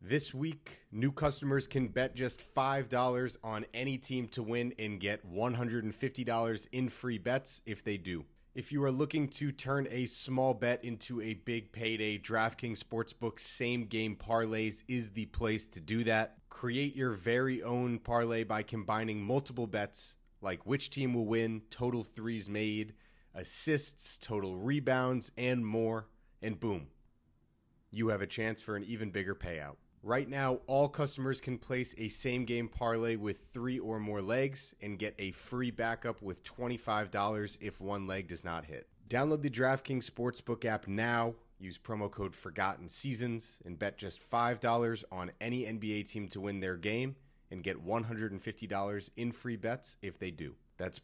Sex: male